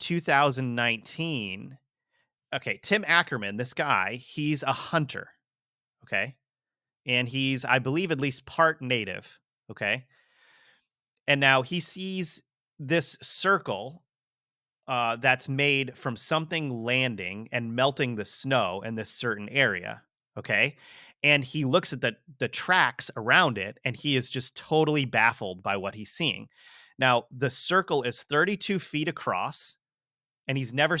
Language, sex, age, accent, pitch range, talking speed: English, male, 30-49, American, 125-155 Hz, 135 wpm